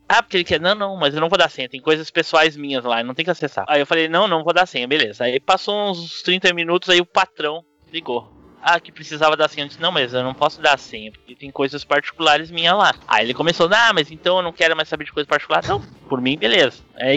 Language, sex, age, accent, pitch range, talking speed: Portuguese, male, 20-39, Brazilian, 145-195 Hz, 275 wpm